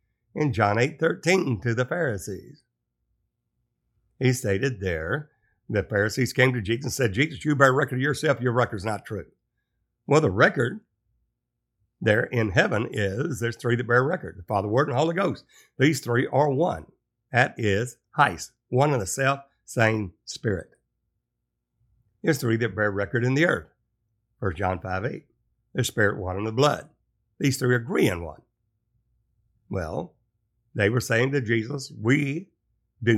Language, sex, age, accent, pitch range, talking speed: English, male, 60-79, American, 105-130 Hz, 155 wpm